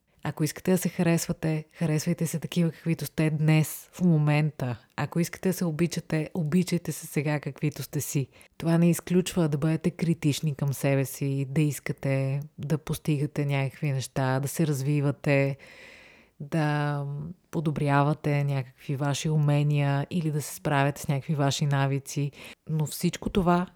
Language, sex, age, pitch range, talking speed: Bulgarian, female, 30-49, 140-165 Hz, 145 wpm